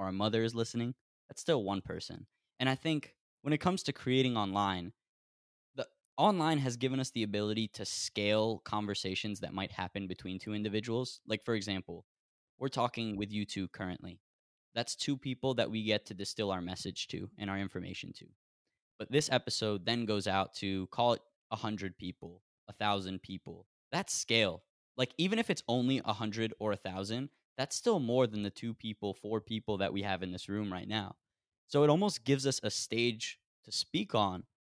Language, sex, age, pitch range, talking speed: English, male, 10-29, 100-130 Hz, 185 wpm